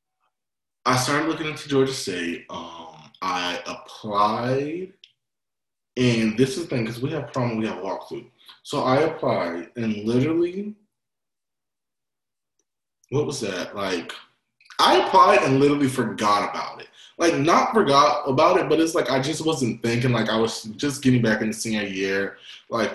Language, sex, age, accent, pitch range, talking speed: English, male, 20-39, American, 105-135 Hz, 155 wpm